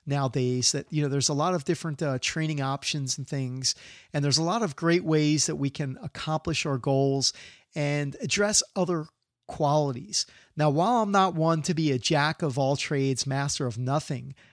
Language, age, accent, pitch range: English, 40-59, American, 135-170 Hz